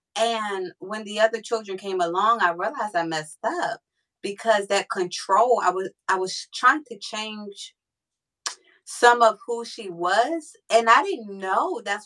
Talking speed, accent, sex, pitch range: 160 wpm, American, female, 190-295 Hz